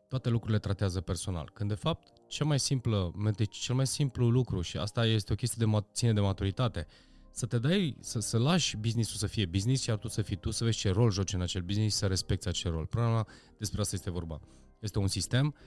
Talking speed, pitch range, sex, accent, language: 220 wpm, 90-115 Hz, male, native, Romanian